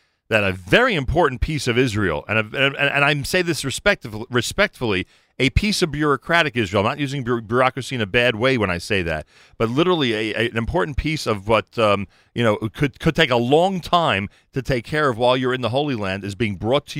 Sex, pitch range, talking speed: male, 110-155 Hz, 225 wpm